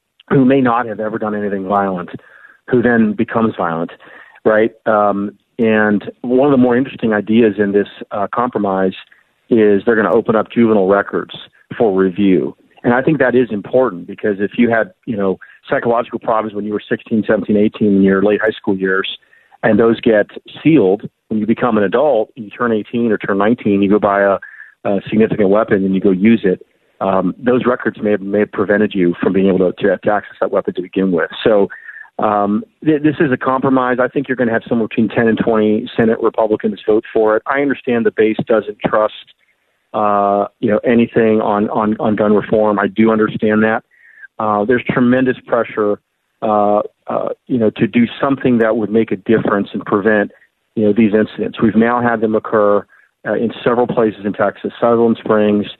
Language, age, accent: English, 40-59, American